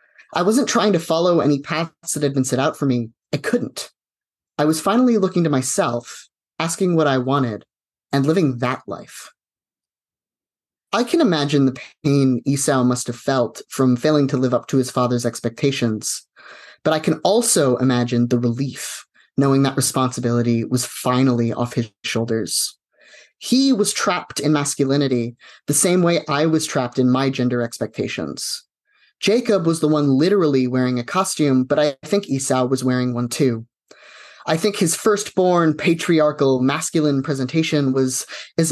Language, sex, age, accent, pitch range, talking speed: English, male, 30-49, American, 125-170 Hz, 160 wpm